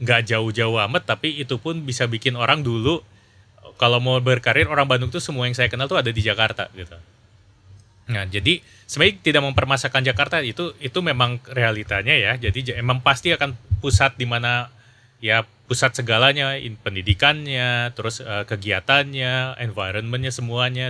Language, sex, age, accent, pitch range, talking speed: Indonesian, male, 30-49, native, 105-130 Hz, 140 wpm